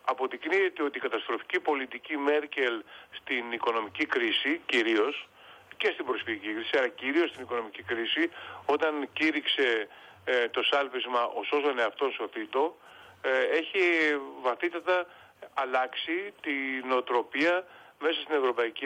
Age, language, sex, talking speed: 30-49, Greek, male, 120 wpm